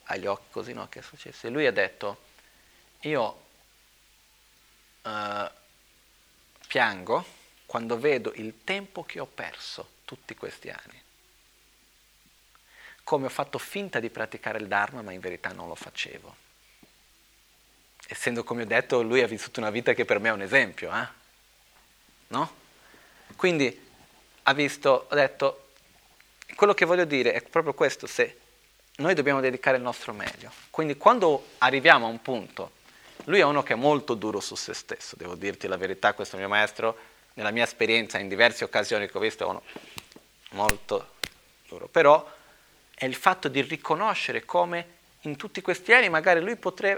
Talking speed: 155 wpm